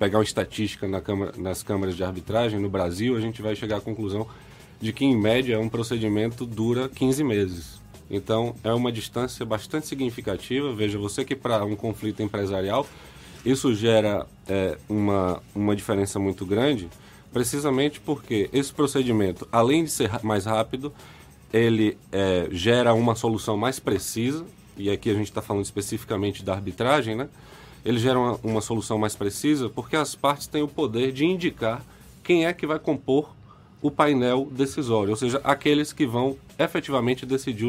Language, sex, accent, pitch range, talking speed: Portuguese, male, Brazilian, 105-135 Hz, 165 wpm